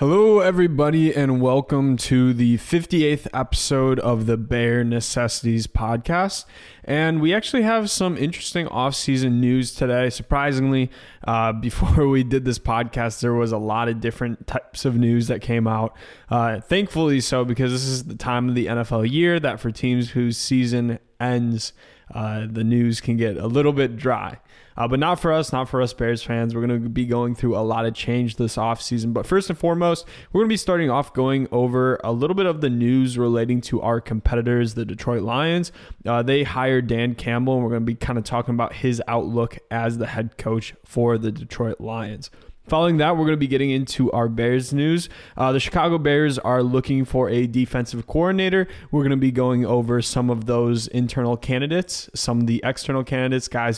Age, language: 20-39, English